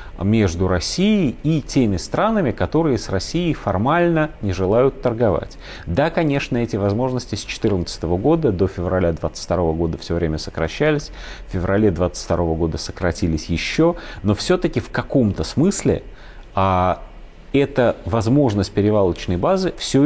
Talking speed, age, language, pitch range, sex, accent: 130 wpm, 30-49, Russian, 90-130 Hz, male, native